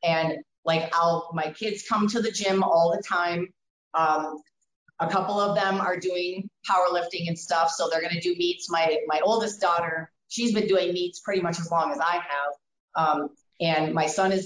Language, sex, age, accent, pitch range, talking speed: English, female, 30-49, American, 165-195 Hz, 200 wpm